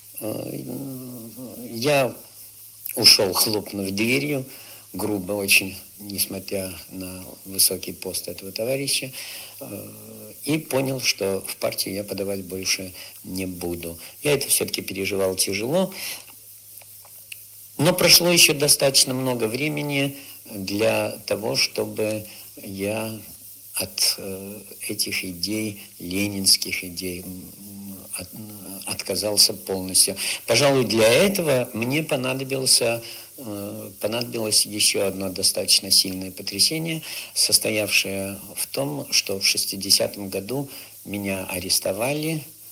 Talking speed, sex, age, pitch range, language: 90 wpm, male, 60-79, 95-125 Hz, Russian